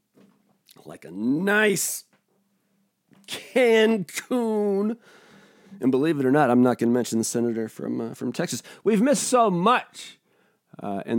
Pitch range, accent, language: 115-195 Hz, American, English